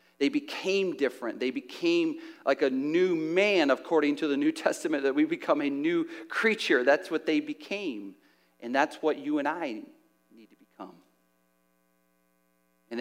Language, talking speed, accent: English, 155 wpm, American